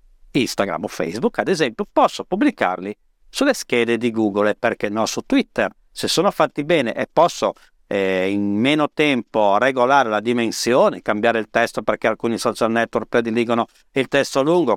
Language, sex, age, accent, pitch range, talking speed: Italian, male, 50-69, native, 115-150 Hz, 165 wpm